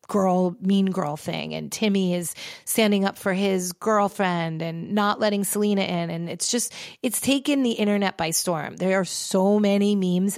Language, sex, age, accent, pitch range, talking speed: English, female, 30-49, American, 175-220 Hz, 180 wpm